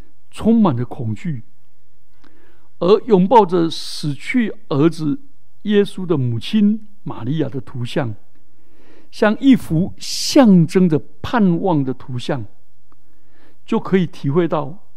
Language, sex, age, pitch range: Chinese, male, 60-79, 125-195 Hz